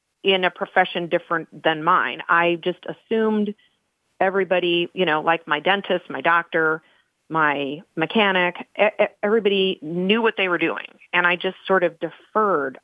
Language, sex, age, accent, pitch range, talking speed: English, female, 40-59, American, 160-190 Hz, 145 wpm